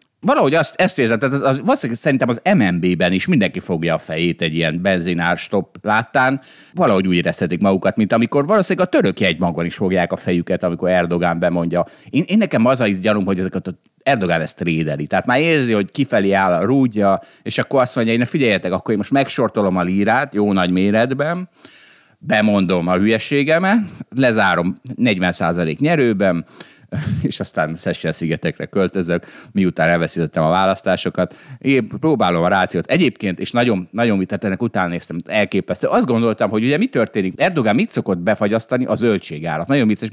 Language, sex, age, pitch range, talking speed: Hungarian, male, 30-49, 90-125 Hz, 165 wpm